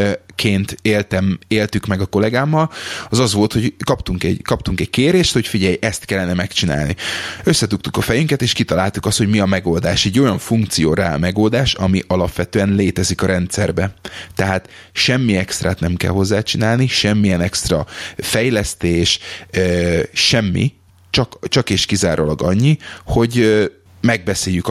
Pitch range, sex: 95-115 Hz, male